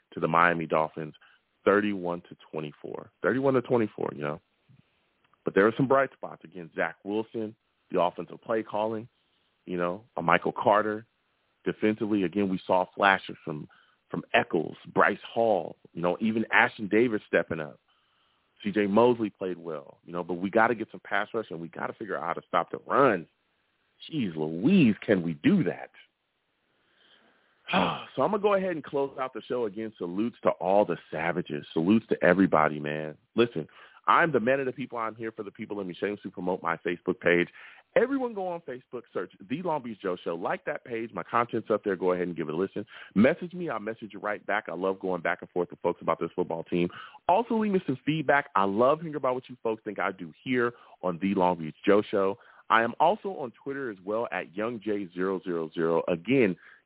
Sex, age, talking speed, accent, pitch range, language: male, 30-49, 205 wpm, American, 90-120 Hz, English